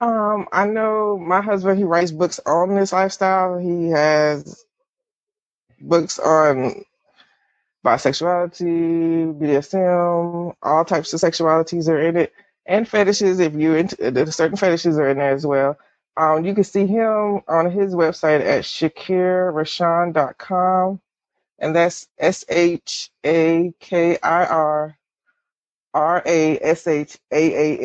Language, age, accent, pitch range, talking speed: English, 20-39, American, 155-190 Hz, 110 wpm